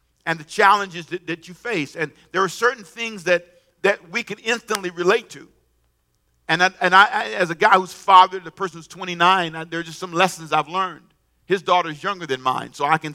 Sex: male